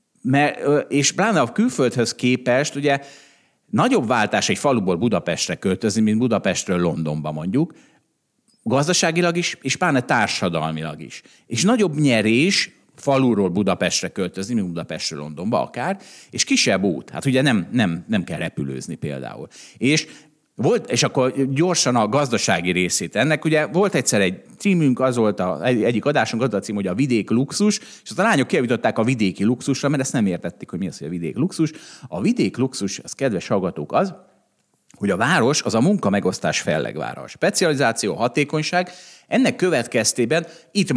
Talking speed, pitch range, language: 160 wpm, 105-160 Hz, Hungarian